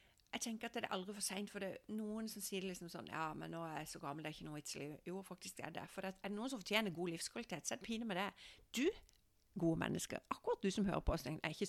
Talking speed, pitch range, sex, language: 280 wpm, 175-215 Hz, female, English